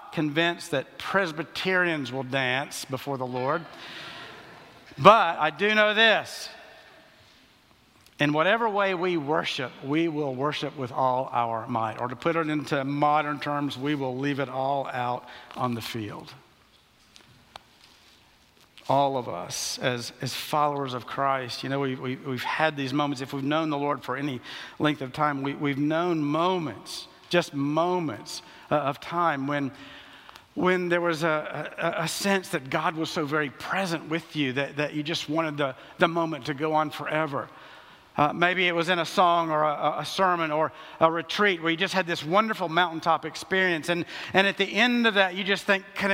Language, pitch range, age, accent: English, 140-180 Hz, 60-79, American